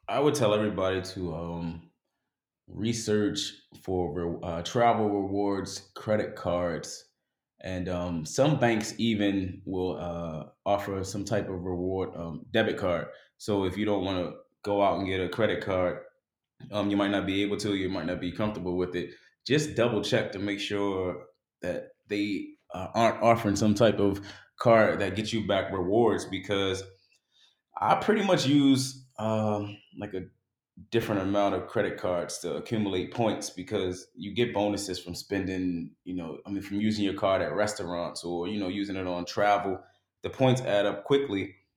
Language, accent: English, American